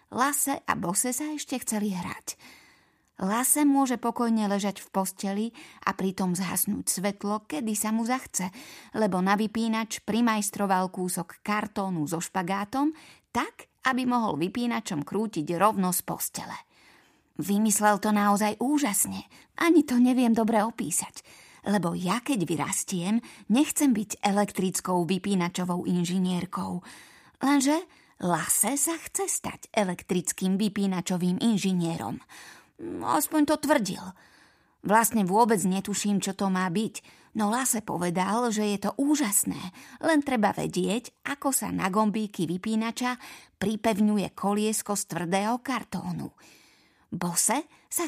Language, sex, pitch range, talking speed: Slovak, female, 185-245 Hz, 120 wpm